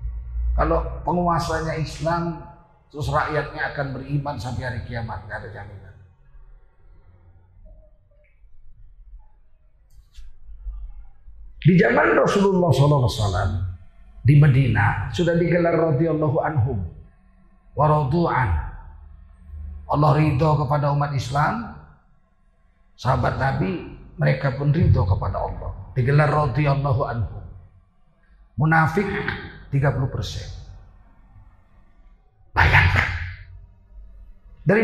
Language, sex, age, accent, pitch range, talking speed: Indonesian, male, 40-59, native, 95-145 Hz, 75 wpm